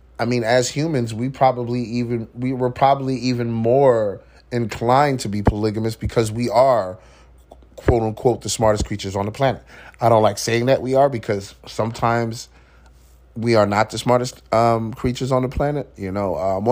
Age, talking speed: 30-49, 175 wpm